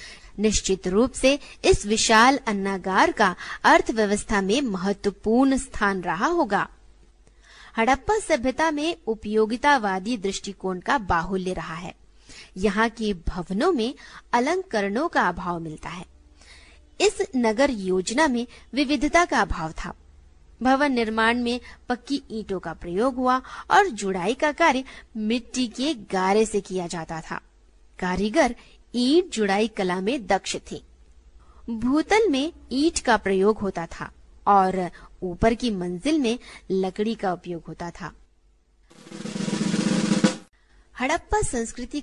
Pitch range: 190-280 Hz